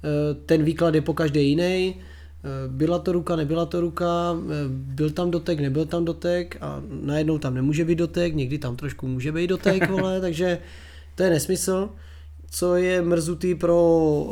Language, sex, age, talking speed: Czech, male, 20-39, 165 wpm